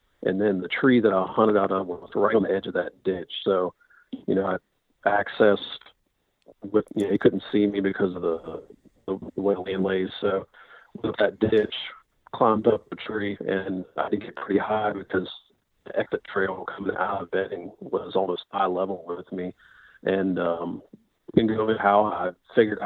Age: 40-59